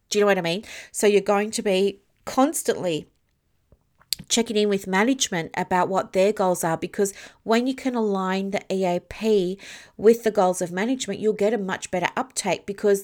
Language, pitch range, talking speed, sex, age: English, 170-210 Hz, 185 wpm, female, 40-59